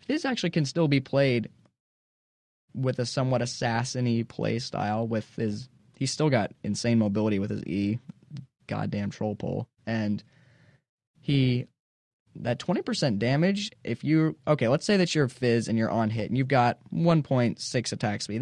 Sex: male